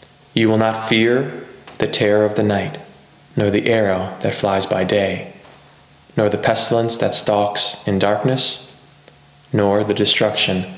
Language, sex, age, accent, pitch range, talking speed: English, male, 20-39, American, 105-130 Hz, 145 wpm